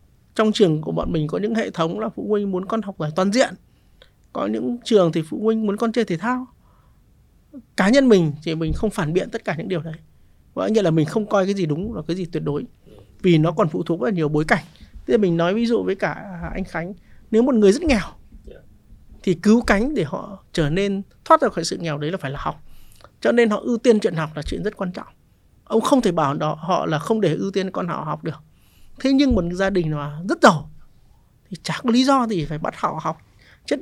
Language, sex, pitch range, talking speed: Vietnamese, male, 170-240 Hz, 250 wpm